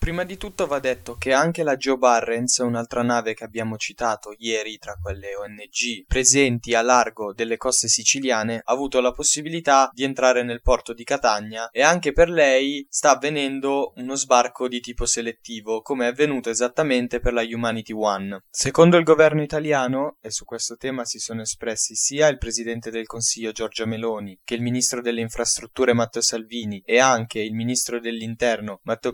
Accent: native